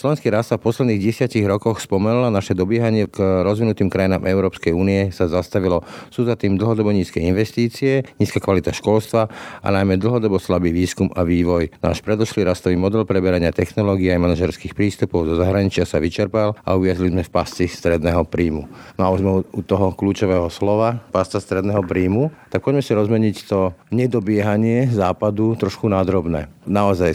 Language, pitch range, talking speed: Slovak, 90-105 Hz, 155 wpm